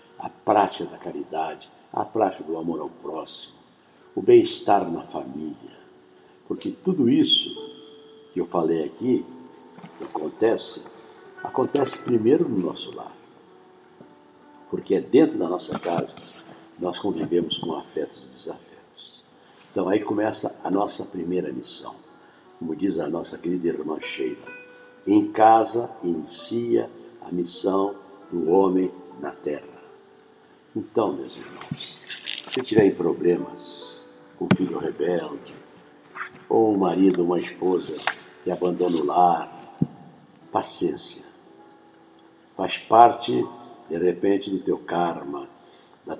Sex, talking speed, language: male, 120 wpm, Portuguese